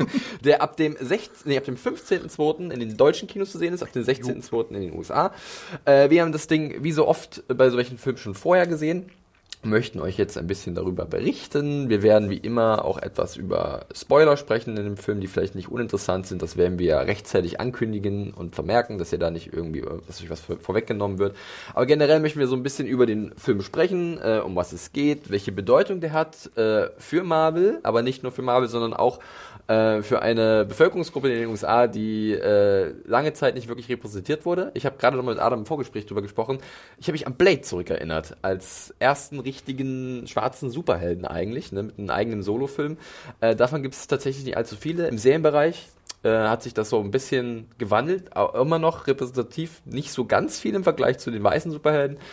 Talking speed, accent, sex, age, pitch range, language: 205 wpm, German, male, 20-39, 110-155 Hz, German